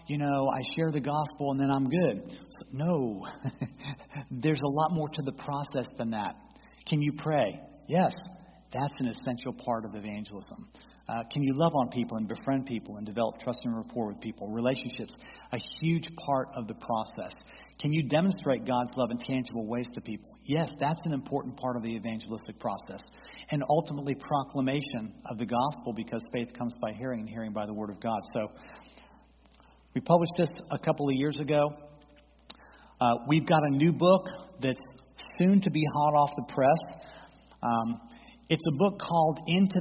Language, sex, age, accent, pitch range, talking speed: English, male, 40-59, American, 120-150 Hz, 180 wpm